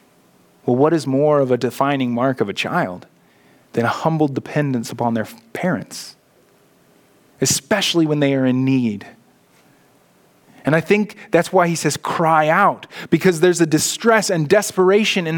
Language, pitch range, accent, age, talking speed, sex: English, 170-230 Hz, American, 30-49, 155 wpm, male